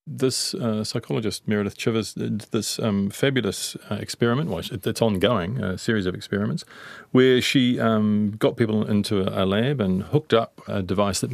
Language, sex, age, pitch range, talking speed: English, male, 40-59, 95-115 Hz, 160 wpm